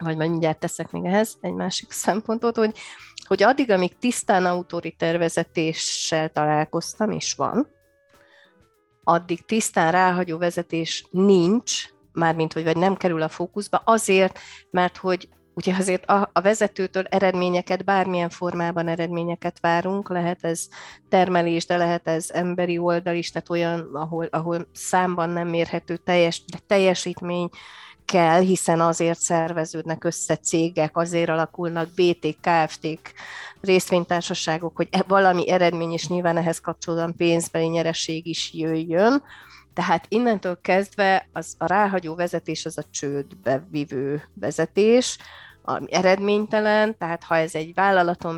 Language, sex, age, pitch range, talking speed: Hungarian, female, 30-49, 165-185 Hz, 130 wpm